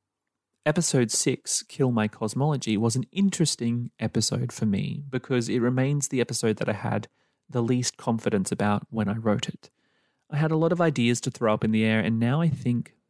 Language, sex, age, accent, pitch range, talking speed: English, male, 30-49, Australian, 115-140 Hz, 195 wpm